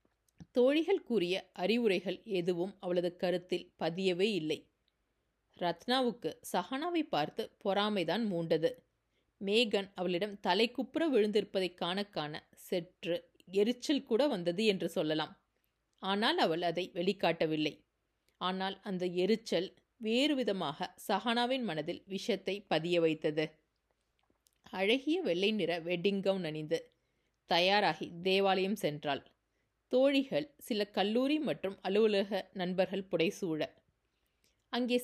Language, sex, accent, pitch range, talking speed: Tamil, female, native, 175-220 Hz, 95 wpm